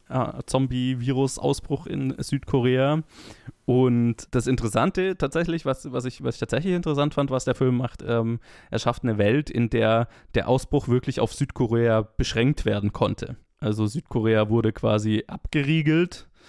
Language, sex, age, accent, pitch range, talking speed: German, male, 20-39, German, 110-130 Hz, 140 wpm